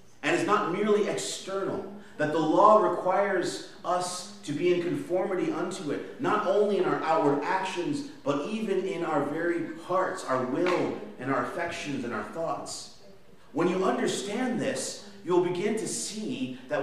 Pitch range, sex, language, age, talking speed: 170-225 Hz, male, English, 30-49, 160 wpm